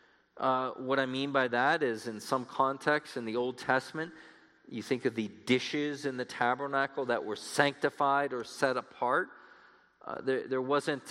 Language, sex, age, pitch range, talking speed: English, male, 40-59, 140-195 Hz, 175 wpm